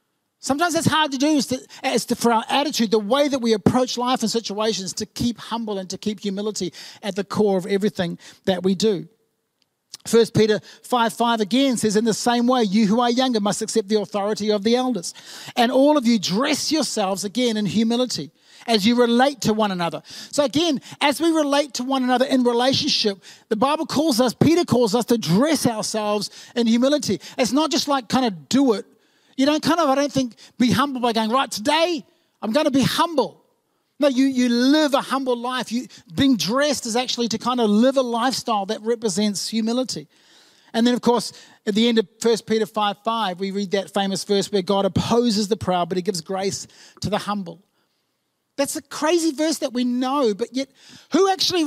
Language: English